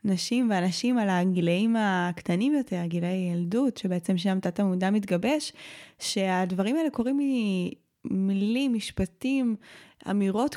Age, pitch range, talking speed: 20-39, 180-220 Hz, 110 wpm